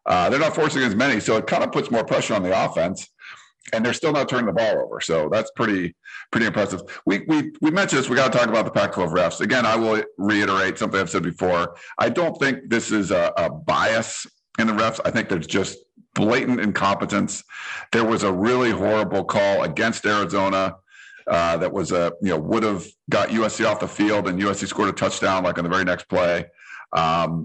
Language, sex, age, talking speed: English, male, 50-69, 220 wpm